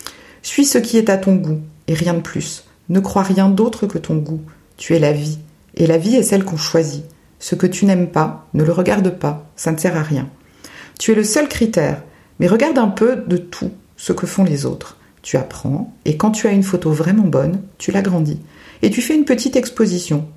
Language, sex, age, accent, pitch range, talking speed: French, female, 50-69, French, 160-215 Hz, 225 wpm